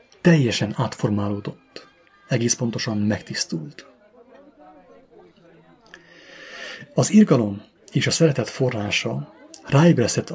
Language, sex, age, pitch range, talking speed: English, male, 30-49, 110-175 Hz, 70 wpm